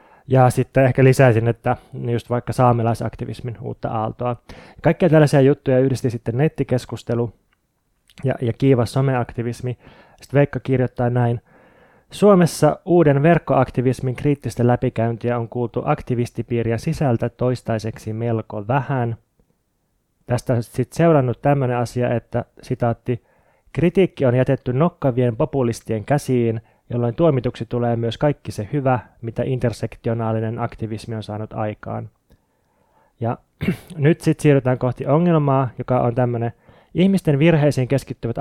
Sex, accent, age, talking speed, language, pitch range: male, native, 20-39, 115 wpm, Finnish, 115-140 Hz